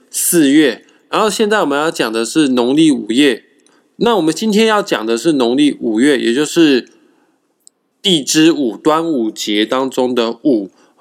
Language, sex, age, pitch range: Chinese, male, 20-39, 120-180 Hz